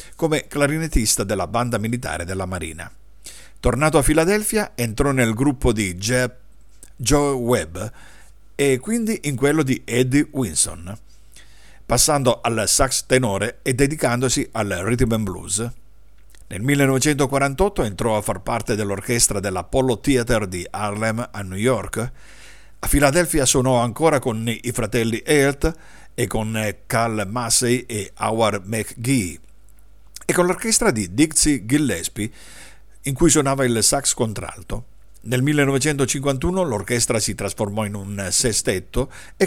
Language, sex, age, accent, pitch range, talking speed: Italian, male, 50-69, native, 105-140 Hz, 130 wpm